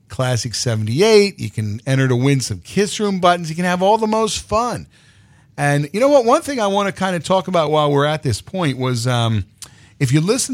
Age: 40-59